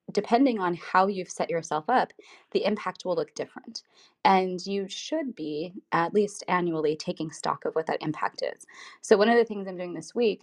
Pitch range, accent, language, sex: 165-215 Hz, American, English, female